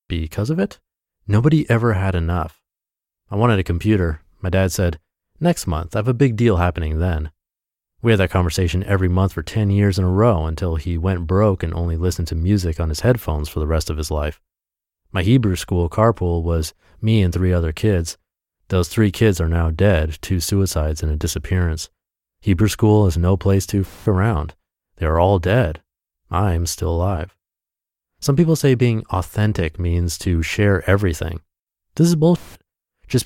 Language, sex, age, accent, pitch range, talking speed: English, male, 30-49, American, 85-110 Hz, 180 wpm